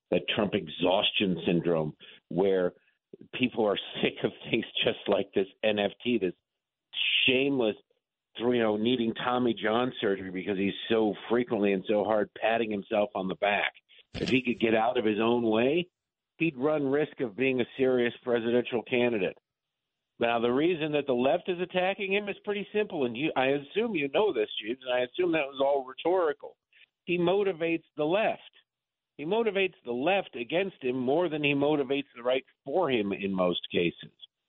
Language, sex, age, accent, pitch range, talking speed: English, male, 50-69, American, 115-145 Hz, 175 wpm